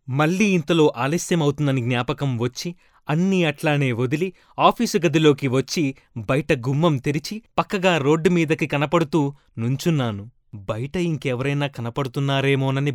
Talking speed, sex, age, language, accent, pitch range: 95 wpm, male, 20-39, Telugu, native, 125-165 Hz